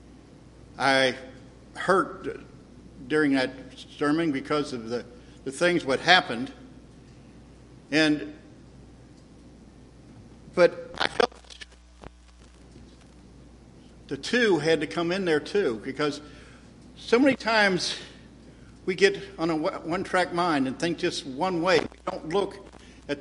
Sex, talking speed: male, 110 wpm